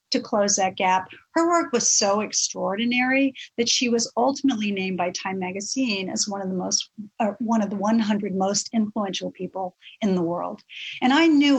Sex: female